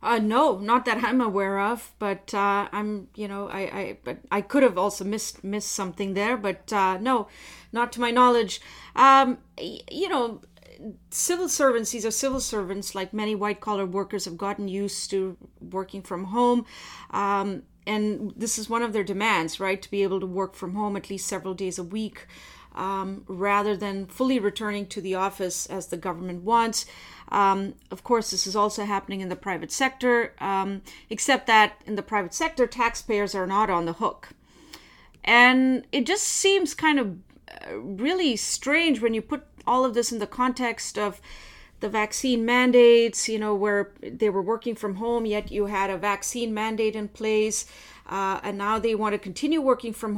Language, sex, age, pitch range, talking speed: English, female, 30-49, 195-235 Hz, 185 wpm